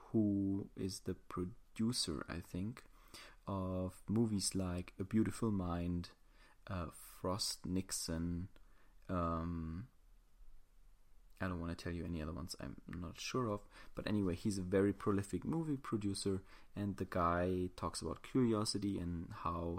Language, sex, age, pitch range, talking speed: English, male, 30-49, 90-110 Hz, 135 wpm